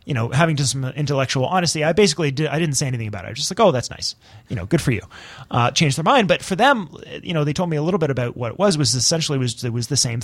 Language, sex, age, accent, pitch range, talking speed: English, male, 30-49, American, 130-170 Hz, 315 wpm